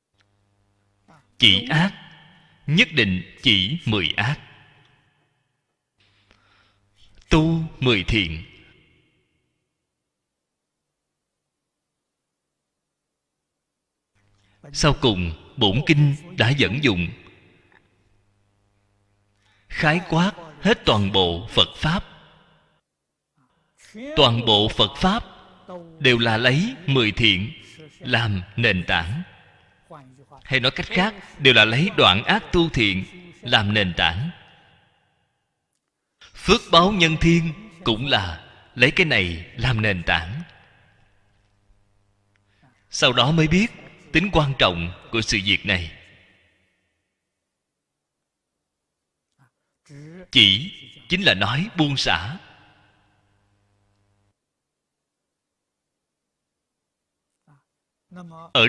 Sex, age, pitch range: male, 30-49, 100-155 Hz